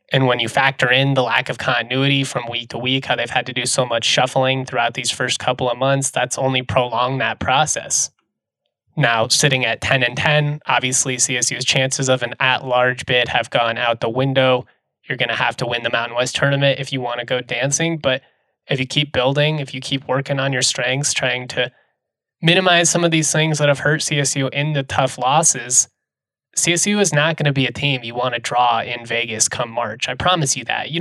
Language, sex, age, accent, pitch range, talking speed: English, male, 20-39, American, 120-145 Hz, 220 wpm